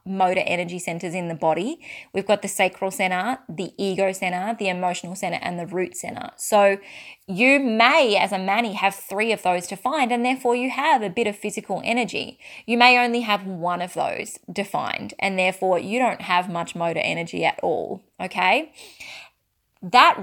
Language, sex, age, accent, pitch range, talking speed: English, female, 20-39, Australian, 180-240 Hz, 185 wpm